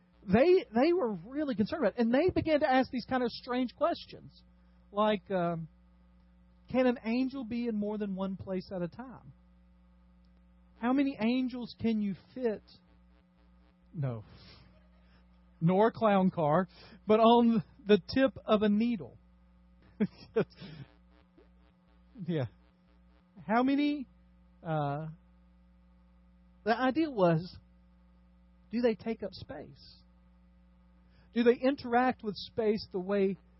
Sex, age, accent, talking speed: male, 40-59, American, 120 wpm